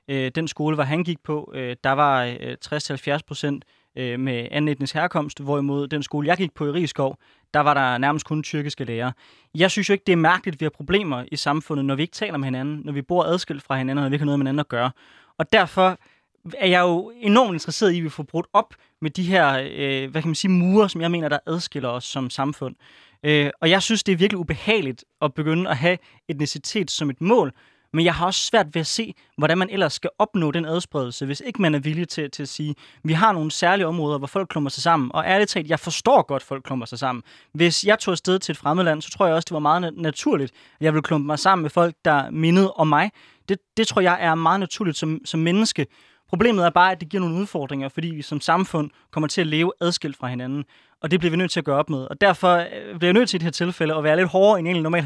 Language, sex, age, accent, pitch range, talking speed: Danish, male, 20-39, native, 145-180 Hz, 255 wpm